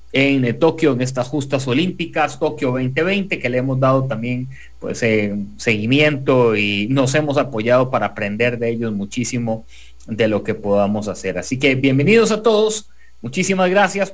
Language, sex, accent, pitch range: English, male, Mexican, 125-180 Hz